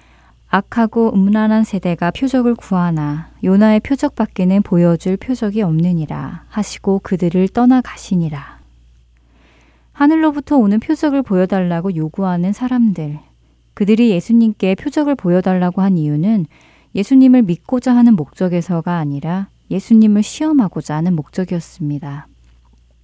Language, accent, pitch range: Korean, native, 160-220 Hz